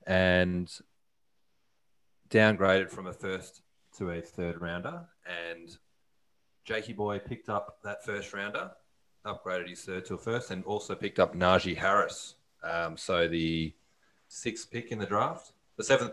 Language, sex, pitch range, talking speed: English, male, 90-100 Hz, 145 wpm